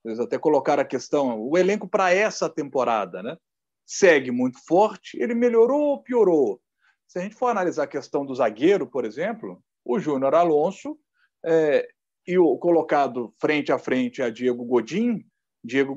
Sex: male